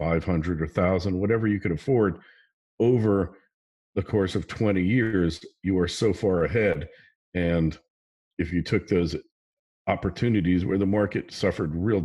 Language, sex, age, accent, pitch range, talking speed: English, male, 50-69, American, 80-100 Hz, 150 wpm